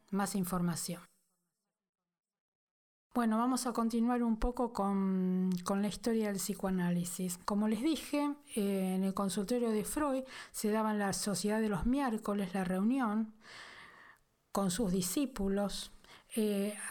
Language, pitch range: Spanish, 200-250 Hz